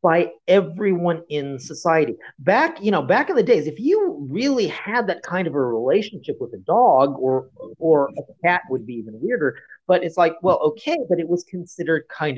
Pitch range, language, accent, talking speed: 125-170 Hz, English, American, 200 wpm